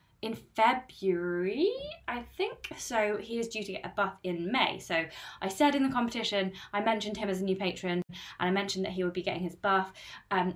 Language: English